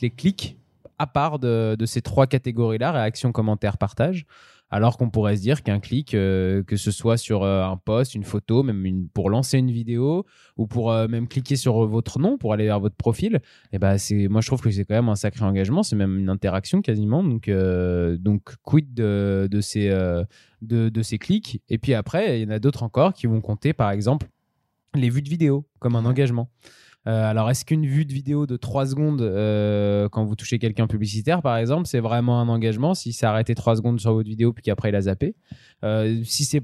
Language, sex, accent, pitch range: French, male, French, 110-140 Hz